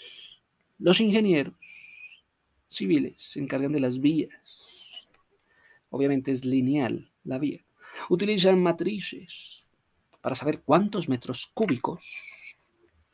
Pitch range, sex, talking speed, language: 120-165 Hz, male, 95 wpm, Spanish